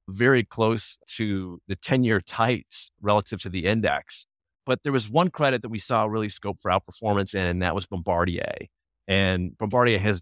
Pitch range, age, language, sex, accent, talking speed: 95-120 Hz, 30-49, English, male, American, 170 wpm